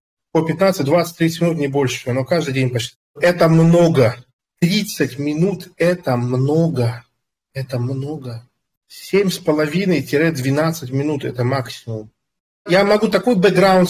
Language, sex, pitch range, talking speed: Russian, male, 125-170 Hz, 115 wpm